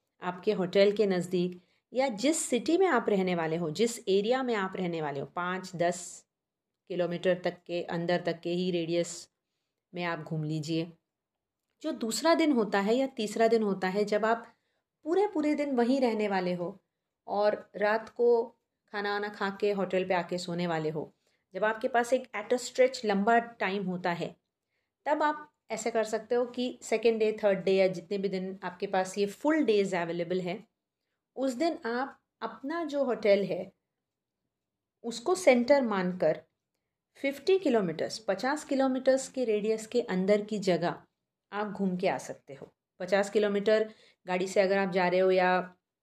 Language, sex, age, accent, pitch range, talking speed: Hindi, female, 30-49, native, 180-230 Hz, 175 wpm